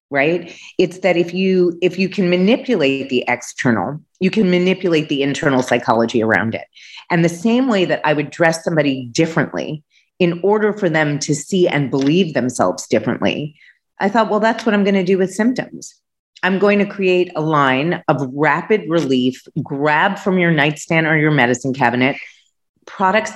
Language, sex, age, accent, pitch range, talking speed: English, female, 30-49, American, 135-195 Hz, 175 wpm